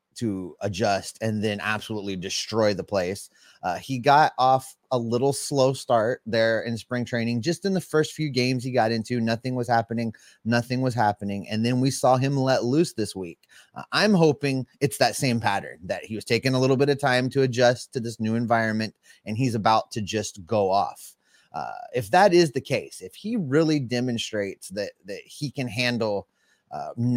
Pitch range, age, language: 110-140 Hz, 30-49, English